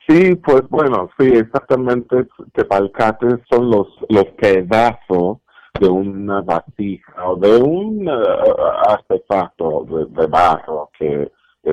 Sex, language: male, Spanish